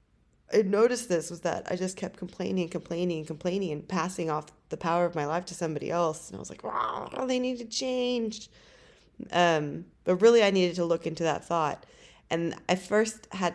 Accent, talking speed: American, 215 wpm